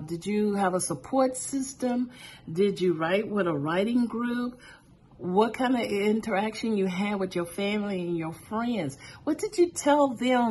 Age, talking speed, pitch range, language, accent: 50-69, 170 wpm, 180-230 Hz, English, American